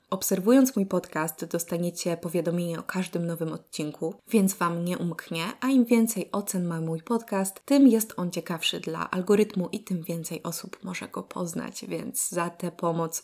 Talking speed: 170 wpm